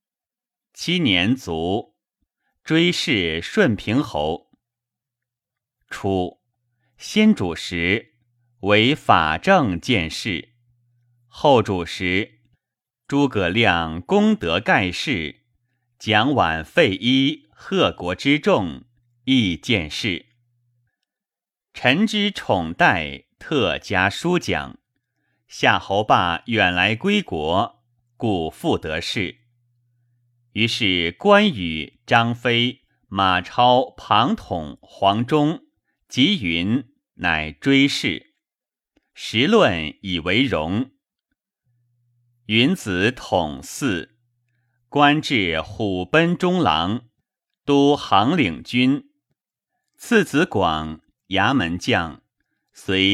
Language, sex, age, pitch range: Chinese, male, 30-49, 95-135 Hz